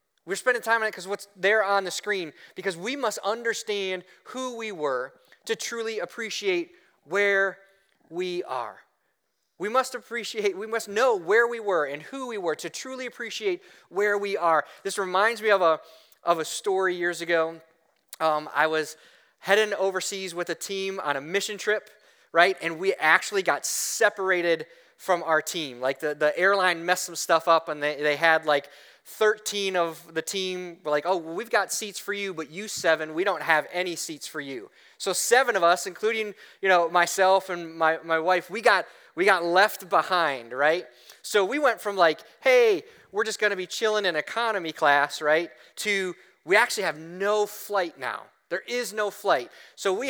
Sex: male